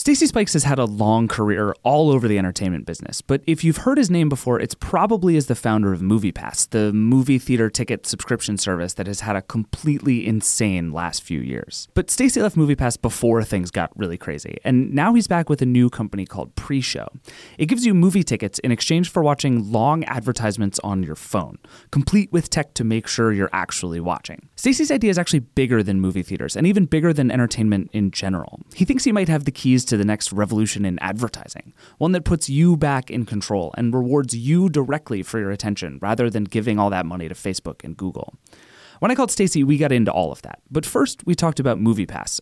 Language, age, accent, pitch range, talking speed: English, 30-49, American, 100-150 Hz, 215 wpm